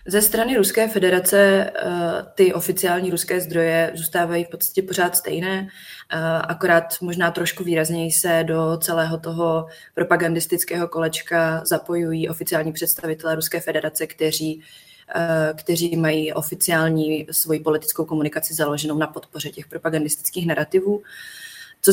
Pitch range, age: 160-180 Hz, 20-39